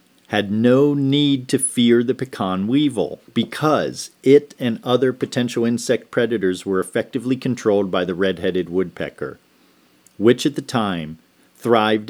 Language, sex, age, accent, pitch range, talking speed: English, male, 40-59, American, 90-125 Hz, 135 wpm